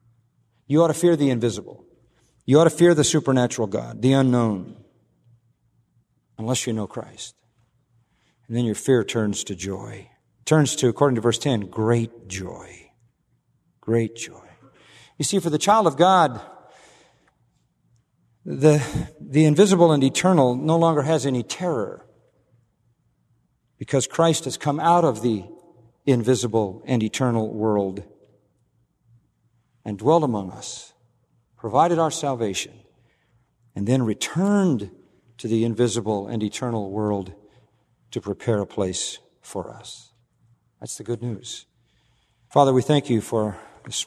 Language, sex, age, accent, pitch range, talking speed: English, male, 50-69, American, 110-135 Hz, 130 wpm